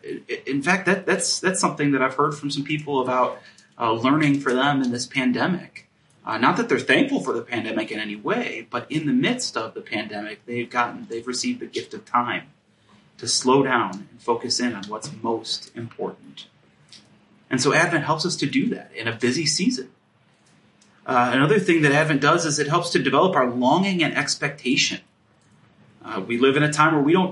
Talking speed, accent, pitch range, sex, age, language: 200 wpm, American, 125-180 Hz, male, 30-49, English